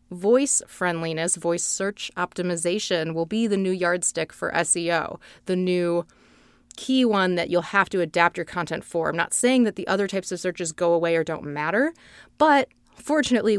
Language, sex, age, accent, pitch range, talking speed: English, female, 30-49, American, 175-210 Hz, 175 wpm